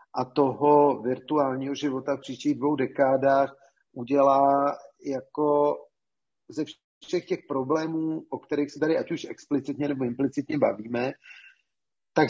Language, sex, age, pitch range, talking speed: Czech, male, 40-59, 135-155 Hz, 120 wpm